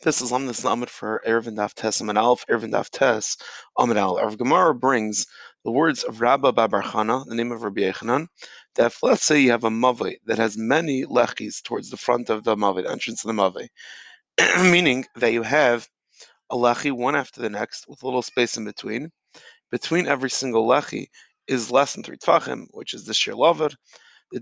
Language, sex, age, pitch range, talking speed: English, male, 30-49, 120-160 Hz, 185 wpm